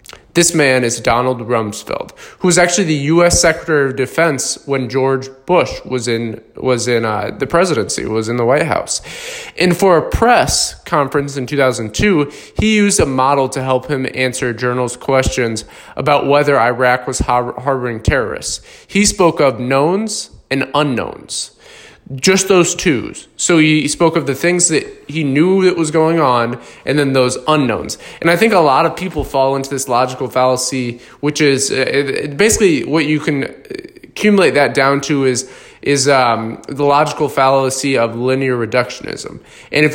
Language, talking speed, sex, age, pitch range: English, 170 wpm, male, 20-39, 130-165 Hz